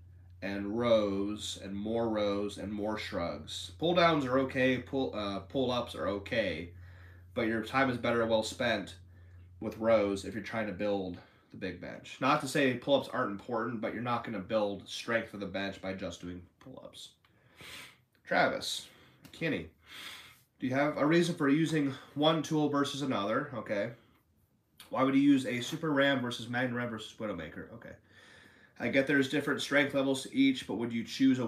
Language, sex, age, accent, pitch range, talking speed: English, male, 30-49, American, 100-135 Hz, 185 wpm